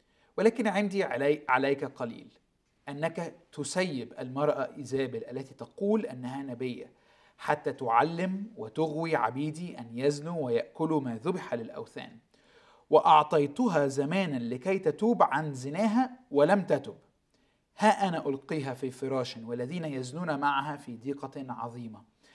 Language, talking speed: Arabic, 115 wpm